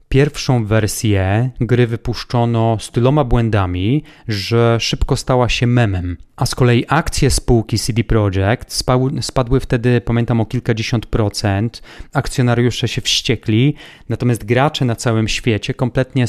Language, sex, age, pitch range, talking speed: Polish, male, 30-49, 110-125 Hz, 125 wpm